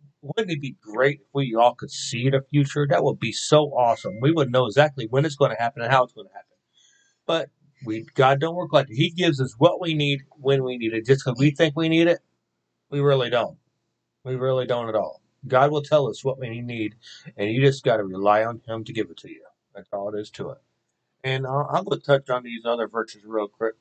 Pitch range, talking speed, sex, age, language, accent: 115-140 Hz, 255 wpm, male, 30-49, English, American